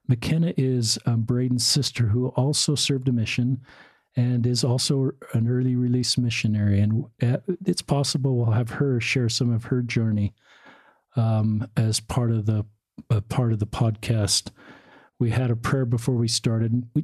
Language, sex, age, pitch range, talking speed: English, male, 50-69, 110-125 Hz, 160 wpm